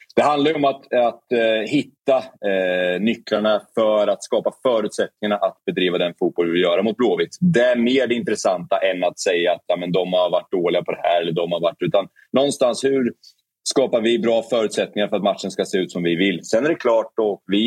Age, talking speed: 30-49, 225 wpm